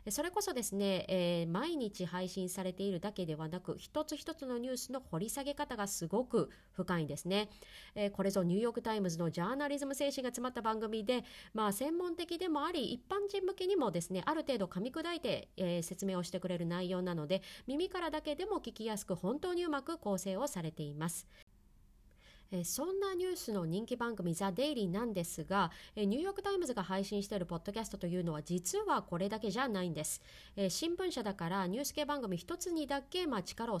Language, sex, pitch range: Japanese, female, 185-285 Hz